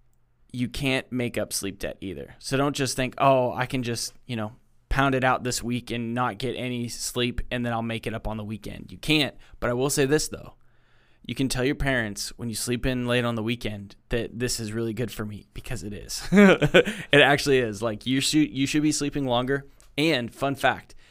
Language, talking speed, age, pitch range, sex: English, 225 wpm, 10-29, 110-125 Hz, male